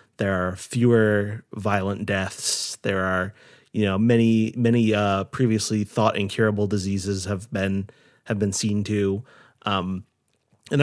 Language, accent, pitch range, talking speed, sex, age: English, American, 100-115 Hz, 135 wpm, male, 30-49